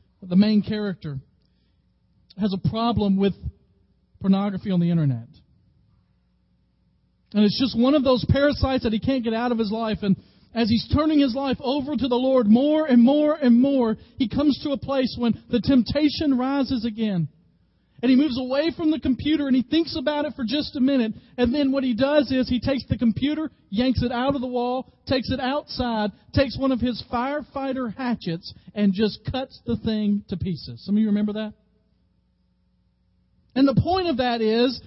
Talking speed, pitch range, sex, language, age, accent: 190 wpm, 195-270 Hz, male, English, 40-59, American